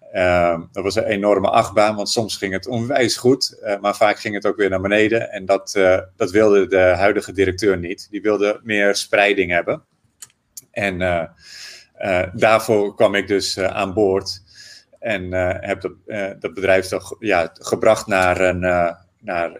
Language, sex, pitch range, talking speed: Dutch, male, 95-110 Hz, 170 wpm